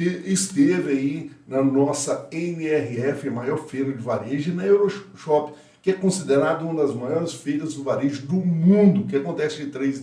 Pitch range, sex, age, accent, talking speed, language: 130-160 Hz, male, 60-79, Brazilian, 160 wpm, Portuguese